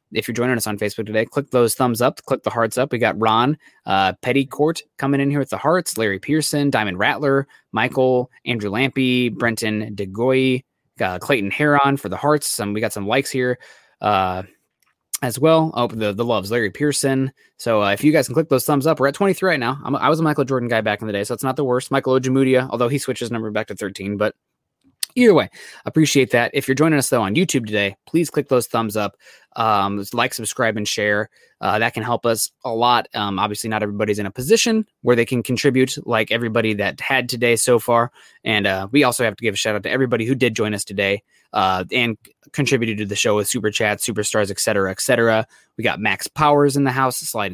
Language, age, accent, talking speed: English, 20-39, American, 230 wpm